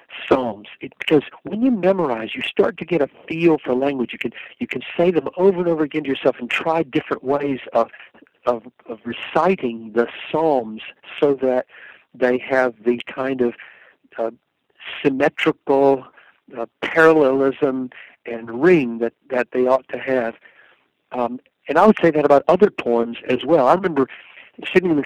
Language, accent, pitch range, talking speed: English, American, 120-155 Hz, 170 wpm